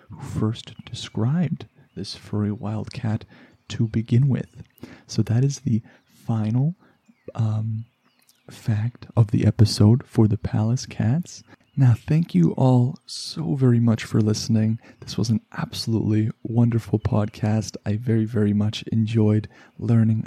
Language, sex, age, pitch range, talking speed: English, male, 30-49, 110-125 Hz, 130 wpm